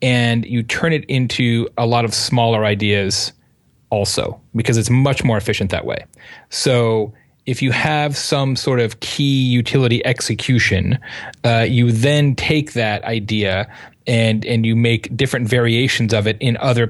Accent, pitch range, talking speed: American, 115-130 Hz, 155 wpm